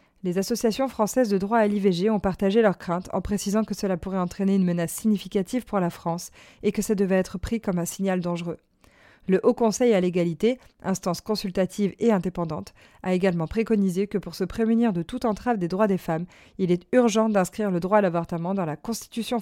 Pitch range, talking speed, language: 185-220 Hz, 205 wpm, French